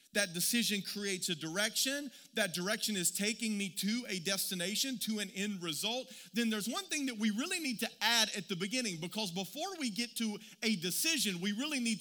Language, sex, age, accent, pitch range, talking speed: English, male, 40-59, American, 195-265 Hz, 200 wpm